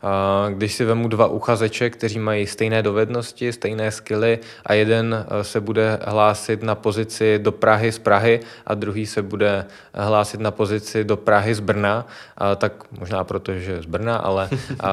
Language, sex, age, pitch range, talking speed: Czech, male, 20-39, 110-125 Hz, 155 wpm